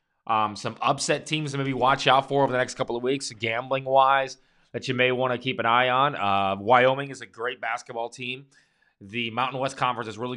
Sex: male